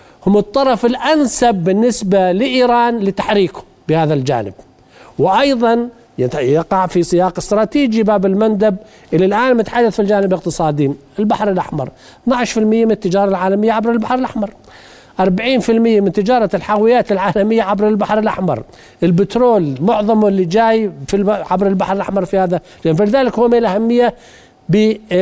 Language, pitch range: Arabic, 180-230 Hz